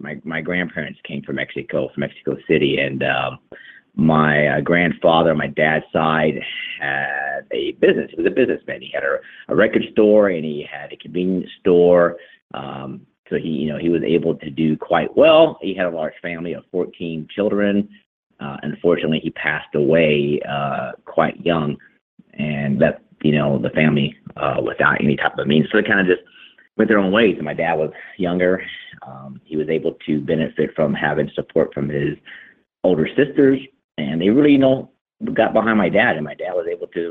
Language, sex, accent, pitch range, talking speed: English, male, American, 75-105 Hz, 190 wpm